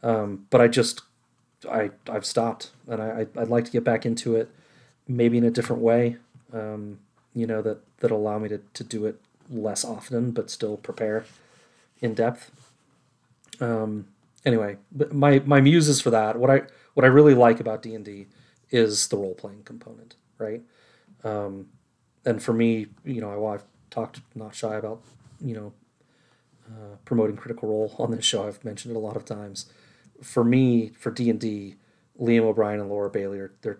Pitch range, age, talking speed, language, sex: 105-120 Hz, 30-49, 180 wpm, English, male